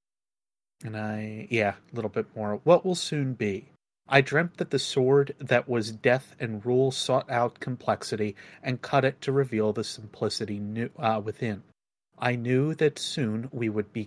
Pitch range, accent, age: 105-130 Hz, American, 30-49